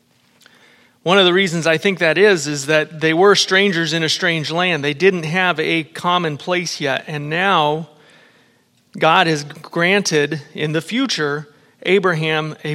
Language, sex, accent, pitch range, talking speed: English, male, American, 150-175 Hz, 160 wpm